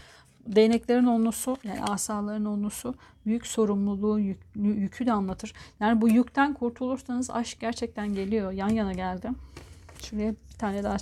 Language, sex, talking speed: Turkish, female, 135 wpm